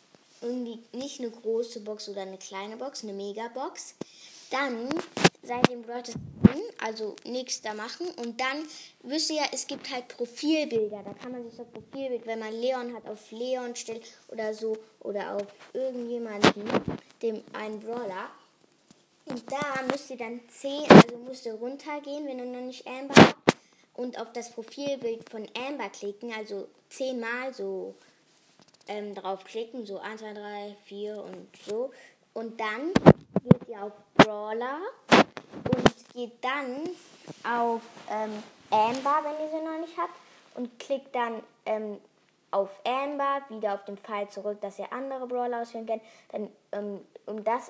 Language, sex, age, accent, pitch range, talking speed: German, female, 10-29, German, 210-260 Hz, 155 wpm